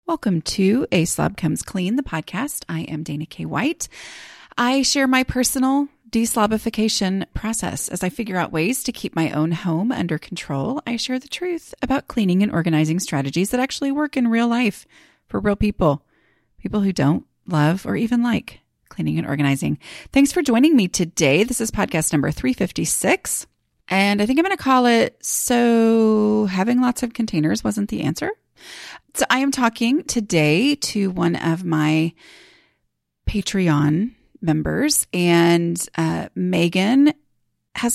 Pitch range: 165-240 Hz